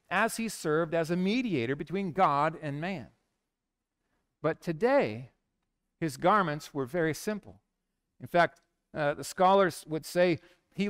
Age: 50-69